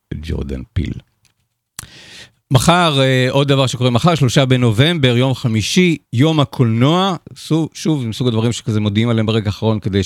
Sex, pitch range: male, 95-130 Hz